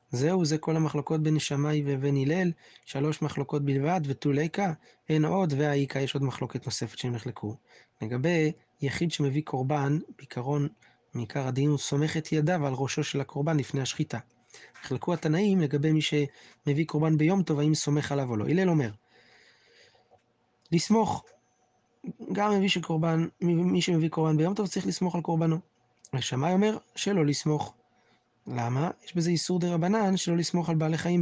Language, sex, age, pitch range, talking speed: Hebrew, male, 20-39, 140-170 Hz, 155 wpm